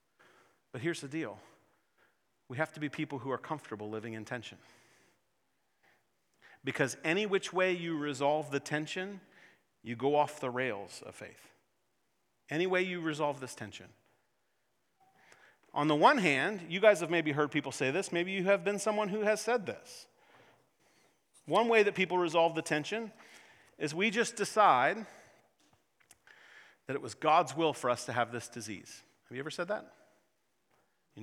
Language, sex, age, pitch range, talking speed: English, male, 40-59, 130-190 Hz, 165 wpm